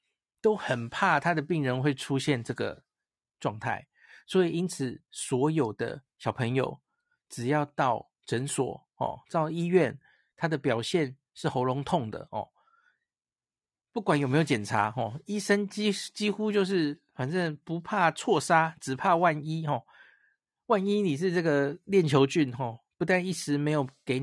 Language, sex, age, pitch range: Chinese, male, 50-69, 130-180 Hz